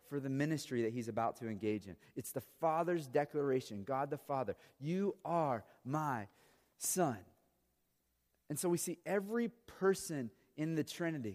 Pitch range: 115-160 Hz